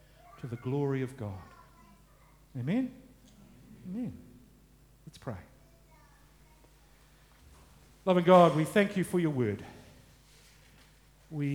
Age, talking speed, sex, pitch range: 50-69, 90 wpm, male, 120-150 Hz